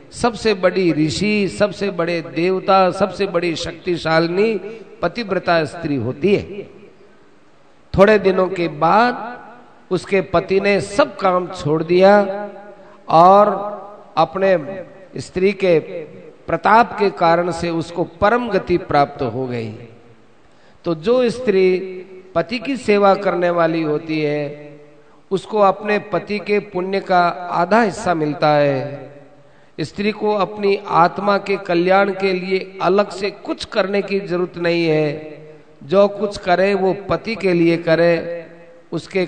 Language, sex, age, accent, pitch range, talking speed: Hindi, male, 50-69, native, 165-200 Hz, 130 wpm